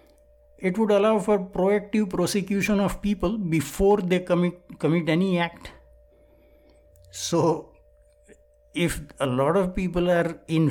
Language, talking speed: English, 120 wpm